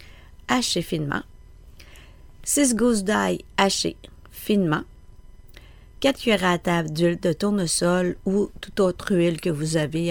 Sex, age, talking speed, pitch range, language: female, 50-69, 125 wpm, 155-215 Hz, French